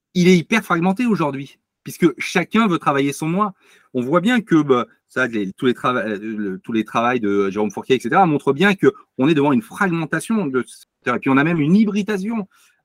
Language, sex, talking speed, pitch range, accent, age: French, male, 190 wpm, 135-200 Hz, French, 40-59